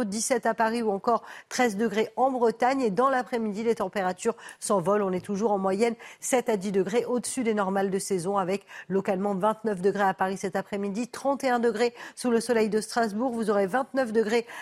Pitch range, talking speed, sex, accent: 200-240 Hz, 195 wpm, female, French